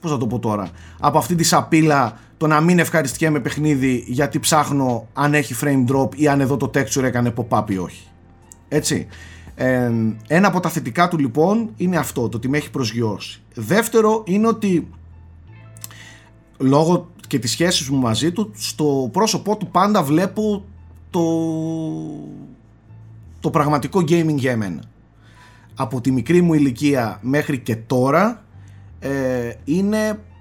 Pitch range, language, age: 110-170 Hz, Greek, 30-49